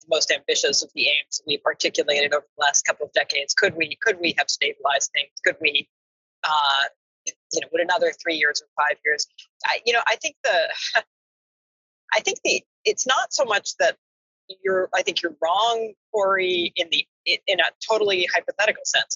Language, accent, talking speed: English, American, 190 wpm